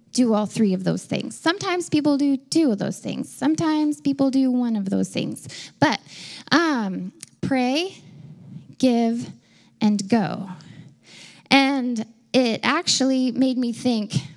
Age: 10-29